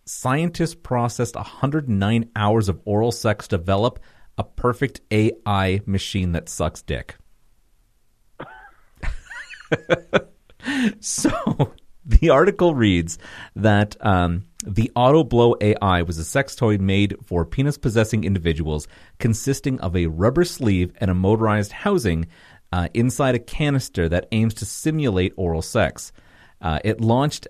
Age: 40-59